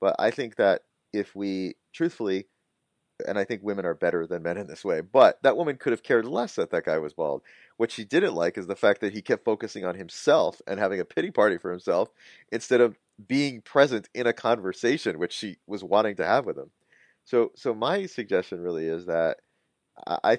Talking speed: 215 wpm